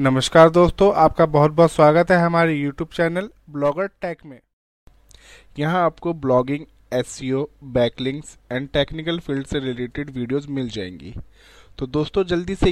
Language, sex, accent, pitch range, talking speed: Hindi, male, native, 135-160 Hz, 150 wpm